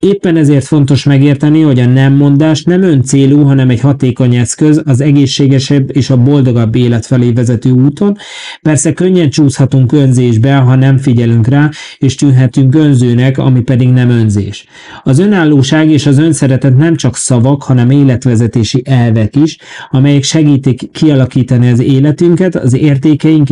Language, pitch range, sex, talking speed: Hungarian, 120-140 Hz, male, 150 wpm